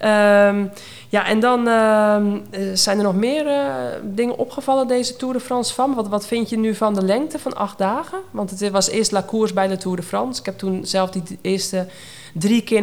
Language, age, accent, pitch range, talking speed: Dutch, 20-39, Dutch, 185-220 Hz, 215 wpm